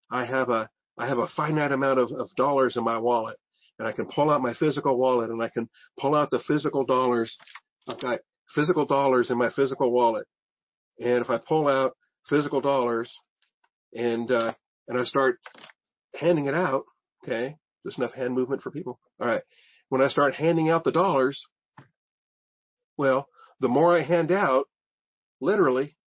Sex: male